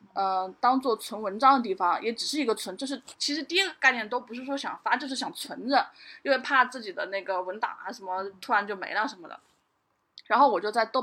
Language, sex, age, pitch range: Chinese, female, 20-39, 205-265 Hz